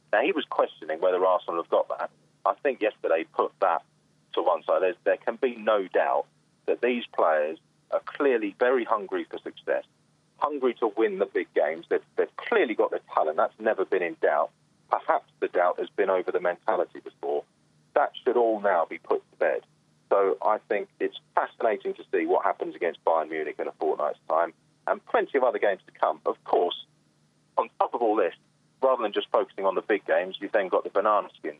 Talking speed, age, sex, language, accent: 210 wpm, 30-49, male, English, British